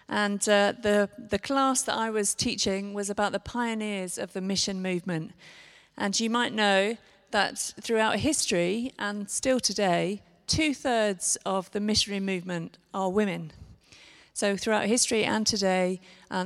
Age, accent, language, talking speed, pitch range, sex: 40-59, British, English, 150 wpm, 185-220 Hz, female